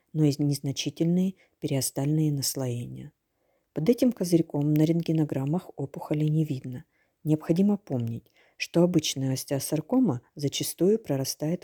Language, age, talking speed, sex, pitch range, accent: Ukrainian, 40-59, 105 wpm, female, 140-170 Hz, native